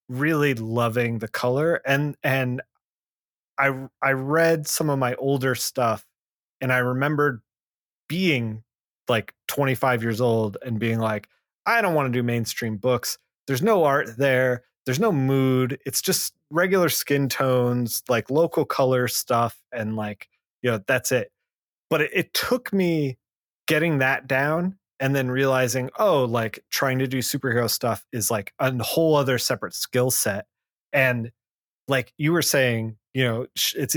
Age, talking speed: 20-39, 155 wpm